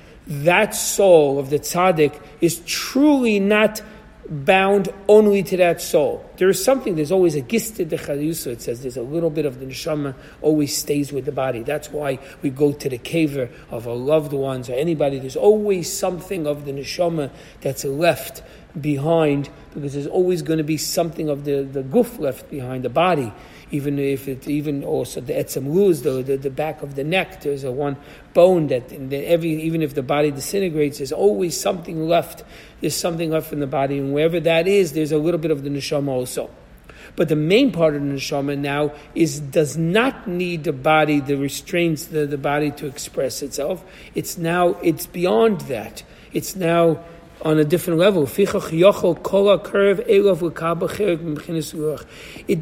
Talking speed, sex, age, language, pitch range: 180 wpm, male, 40-59, English, 145-180 Hz